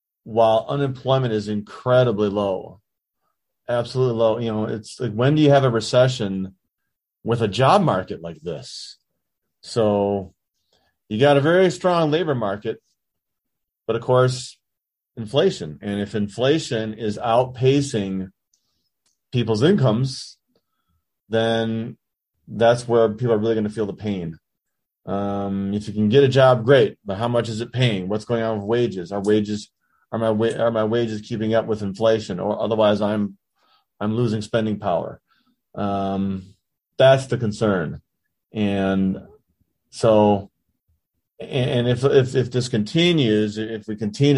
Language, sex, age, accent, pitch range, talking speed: English, male, 30-49, American, 100-120 Hz, 145 wpm